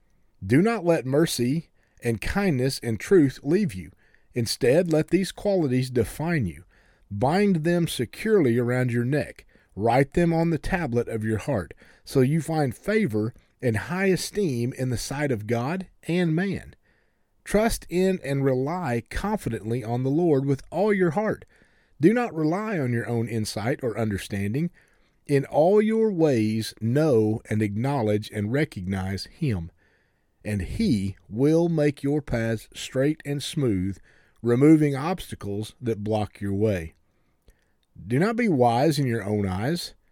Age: 40-59